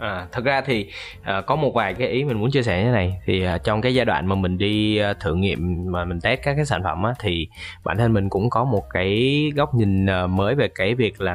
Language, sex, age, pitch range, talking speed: Vietnamese, male, 20-39, 95-125 Hz, 255 wpm